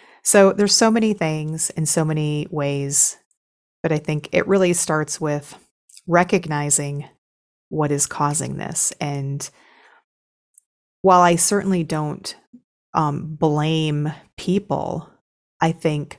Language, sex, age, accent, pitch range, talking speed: English, female, 30-49, American, 150-190 Hz, 115 wpm